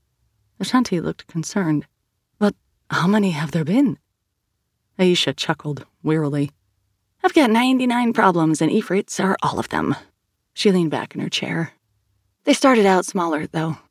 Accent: American